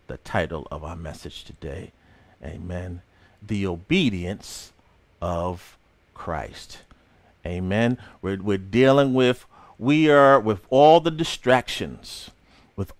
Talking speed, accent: 105 wpm, American